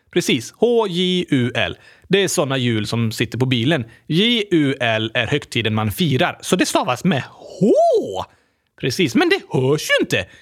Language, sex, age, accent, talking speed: Swedish, male, 30-49, native, 150 wpm